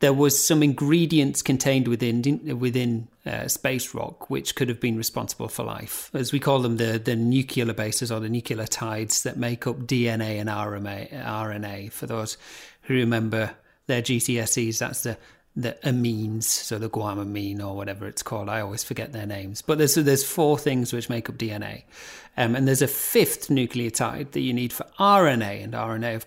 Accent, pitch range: British, 115-145 Hz